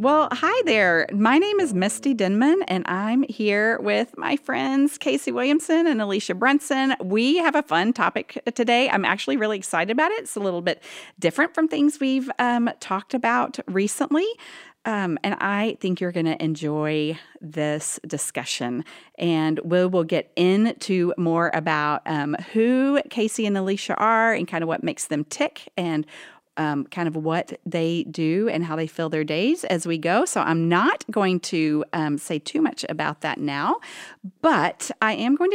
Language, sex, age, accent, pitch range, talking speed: English, female, 40-59, American, 155-245 Hz, 175 wpm